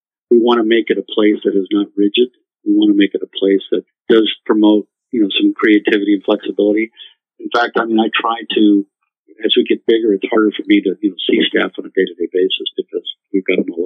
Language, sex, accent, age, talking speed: English, male, American, 50-69, 250 wpm